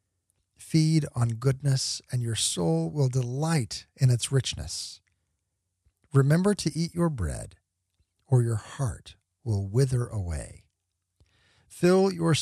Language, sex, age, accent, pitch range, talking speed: English, male, 50-69, American, 90-150 Hz, 115 wpm